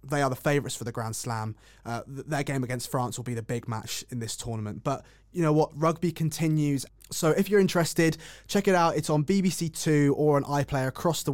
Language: English